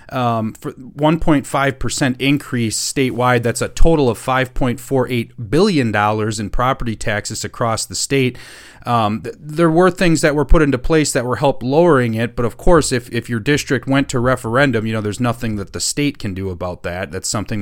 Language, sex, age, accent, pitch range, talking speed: English, male, 30-49, American, 115-150 Hz, 185 wpm